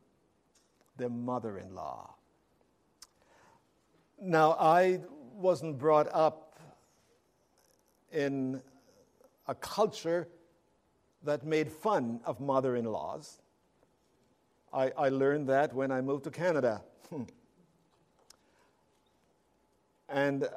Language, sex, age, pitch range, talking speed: English, male, 60-79, 130-165 Hz, 75 wpm